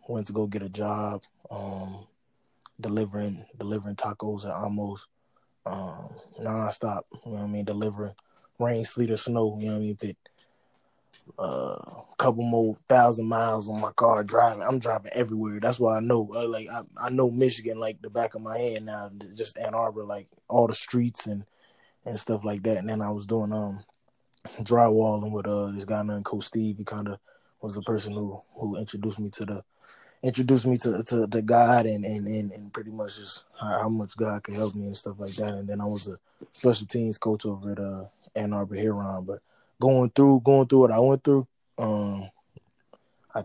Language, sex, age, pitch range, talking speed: English, male, 20-39, 105-115 Hz, 200 wpm